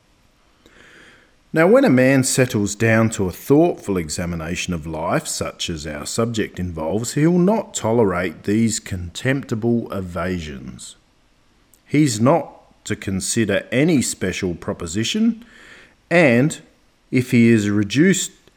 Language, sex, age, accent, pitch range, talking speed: English, male, 40-59, Australian, 95-125 Hz, 115 wpm